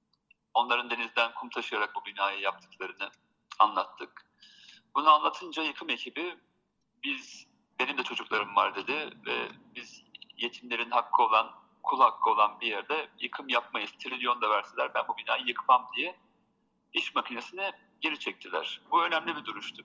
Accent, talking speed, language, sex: native, 140 wpm, Turkish, male